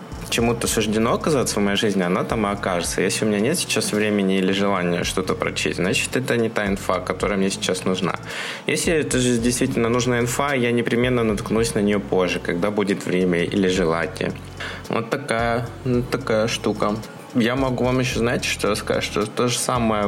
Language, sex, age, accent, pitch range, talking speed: Russian, male, 20-39, native, 100-115 Hz, 185 wpm